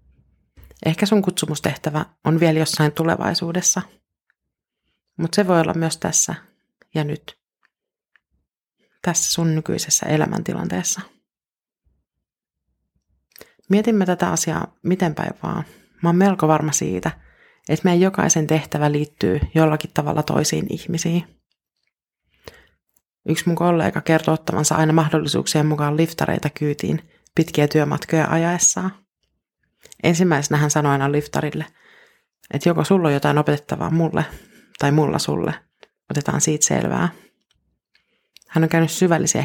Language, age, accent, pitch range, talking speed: Finnish, 30-49, native, 150-175 Hz, 110 wpm